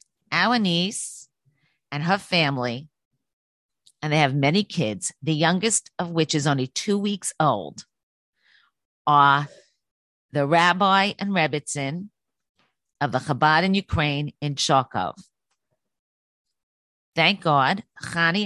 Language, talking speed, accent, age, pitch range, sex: English, 110 wpm, American, 40-59, 140-180 Hz, female